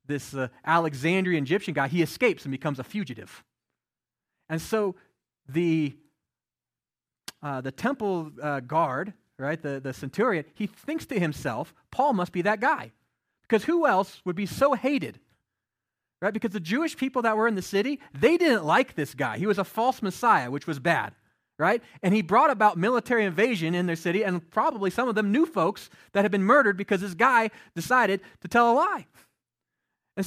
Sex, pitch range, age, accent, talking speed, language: male, 145-210 Hz, 30-49, American, 180 wpm, English